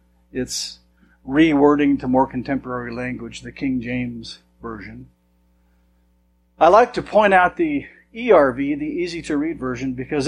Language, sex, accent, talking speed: English, male, American, 125 wpm